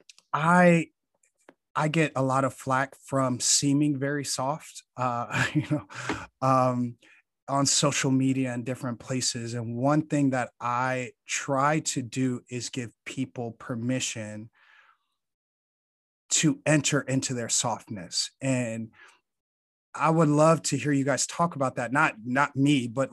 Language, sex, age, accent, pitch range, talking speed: English, male, 30-49, American, 125-150 Hz, 140 wpm